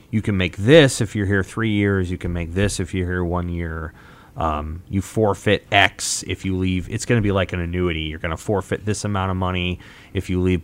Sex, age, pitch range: male, 30-49, 90-105 Hz